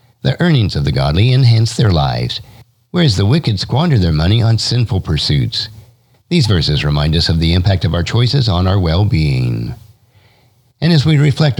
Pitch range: 90-130 Hz